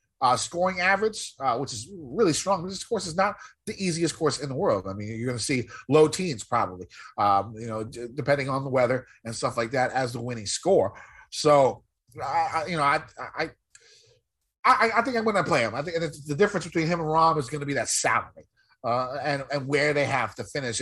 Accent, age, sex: American, 30-49, male